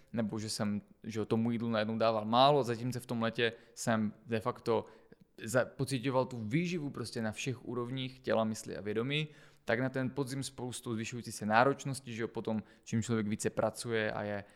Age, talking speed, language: 20-39, 175 wpm, Czech